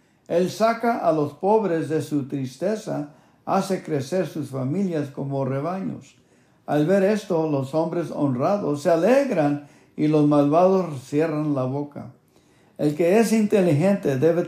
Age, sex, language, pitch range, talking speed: 60-79, male, English, 140-175 Hz, 135 wpm